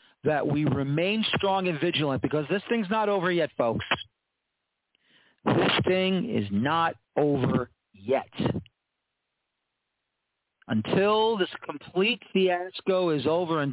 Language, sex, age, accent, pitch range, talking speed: English, male, 40-59, American, 140-180 Hz, 115 wpm